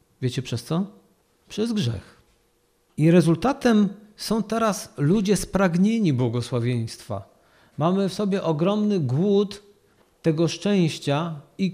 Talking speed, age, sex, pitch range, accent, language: 100 wpm, 50-69, male, 145-190 Hz, native, Polish